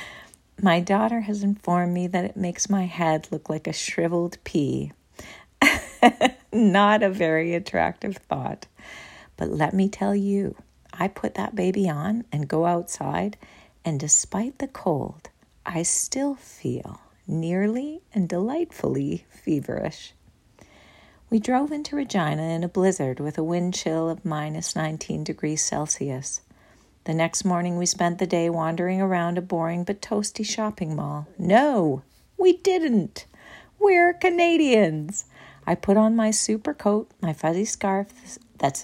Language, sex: English, female